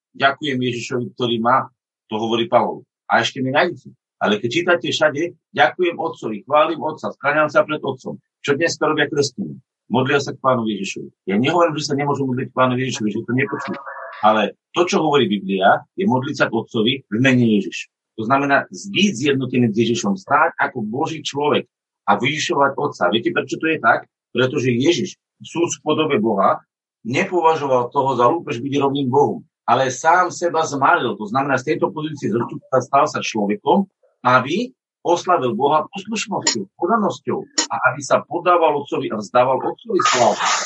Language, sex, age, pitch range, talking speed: Slovak, male, 50-69, 125-165 Hz, 170 wpm